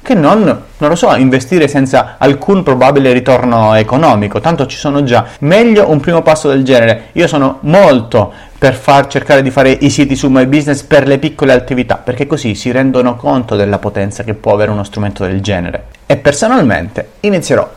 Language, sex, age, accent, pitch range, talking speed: Italian, male, 30-49, native, 120-170 Hz, 185 wpm